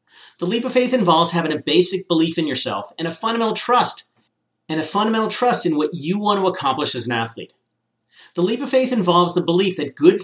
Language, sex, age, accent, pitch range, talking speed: English, male, 40-59, American, 150-195 Hz, 215 wpm